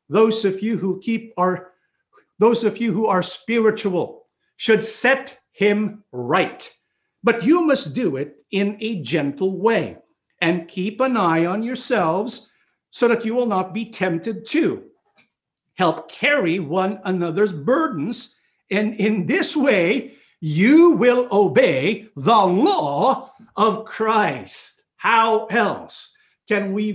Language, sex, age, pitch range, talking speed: English, male, 50-69, 175-235 Hz, 130 wpm